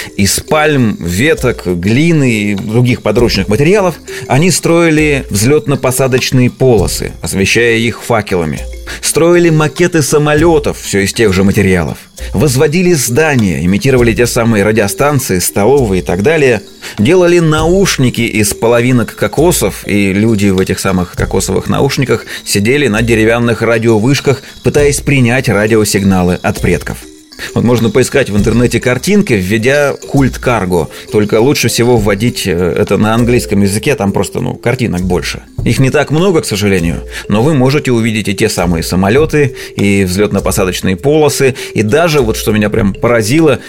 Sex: male